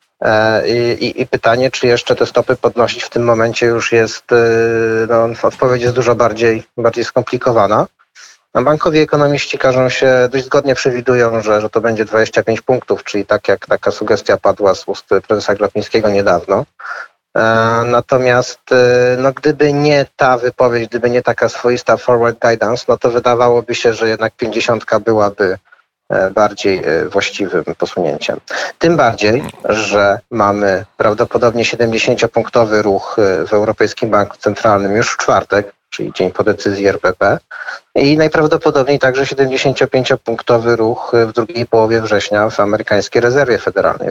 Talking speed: 135 wpm